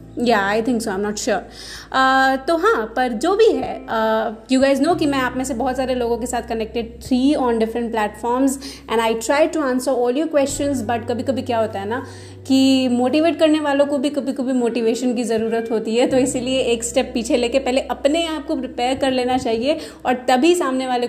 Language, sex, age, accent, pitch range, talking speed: Hindi, female, 30-49, native, 230-270 Hz, 220 wpm